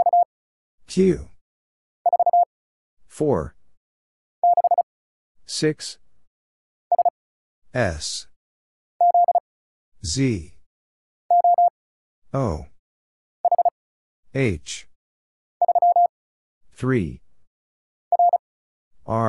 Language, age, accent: English, 50-69, American